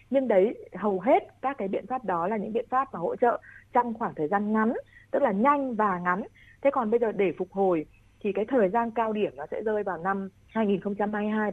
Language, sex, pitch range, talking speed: Vietnamese, female, 180-240 Hz, 235 wpm